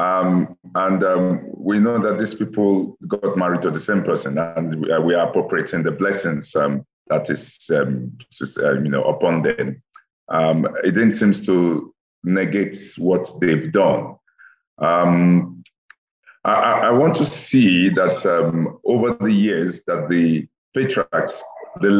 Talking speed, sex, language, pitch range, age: 155 wpm, male, English, 80-100 Hz, 50-69